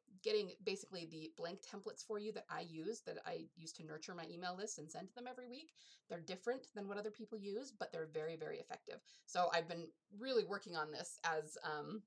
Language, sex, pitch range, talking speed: English, female, 170-260 Hz, 225 wpm